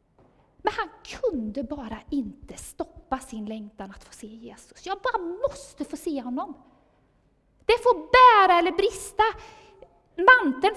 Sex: female